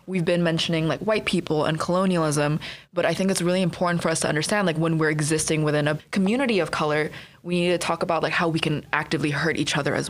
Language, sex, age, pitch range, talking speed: English, female, 20-39, 155-190 Hz, 245 wpm